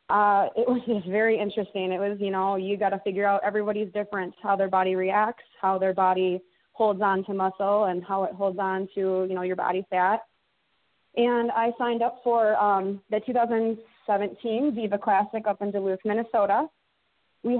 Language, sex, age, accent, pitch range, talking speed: English, female, 20-39, American, 200-235 Hz, 185 wpm